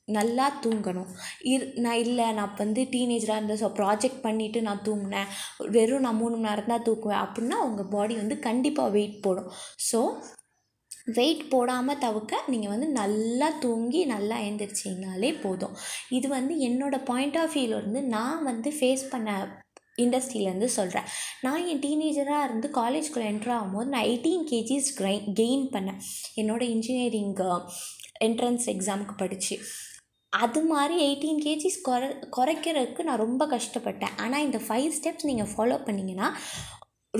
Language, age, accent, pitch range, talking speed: Tamil, 20-39, native, 215-275 Hz, 130 wpm